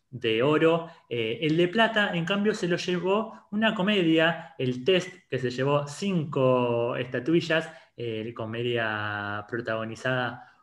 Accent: Argentinian